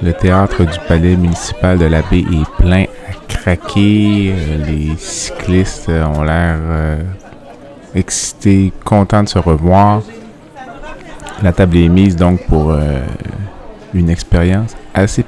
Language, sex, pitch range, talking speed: French, male, 80-95 Hz, 125 wpm